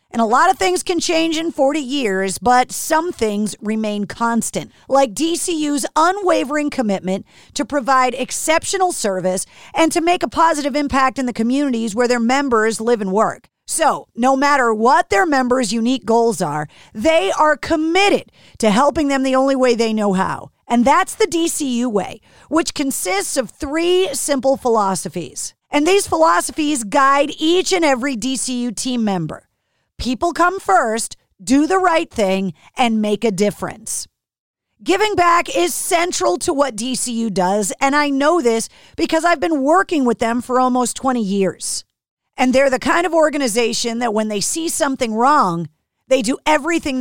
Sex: female